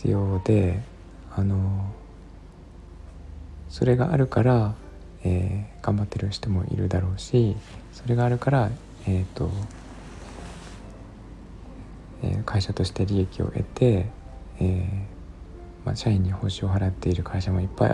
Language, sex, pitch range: Japanese, male, 90-115 Hz